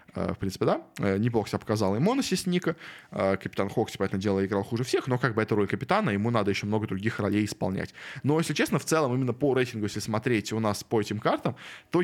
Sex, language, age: male, Russian, 20-39